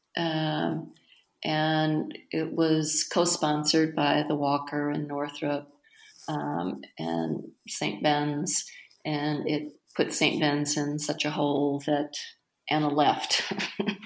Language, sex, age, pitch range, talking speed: English, female, 40-59, 145-160 Hz, 110 wpm